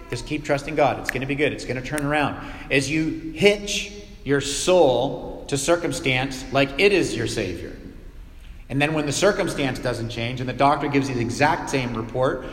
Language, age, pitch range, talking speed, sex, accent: English, 40-59, 120-155 Hz, 200 wpm, male, American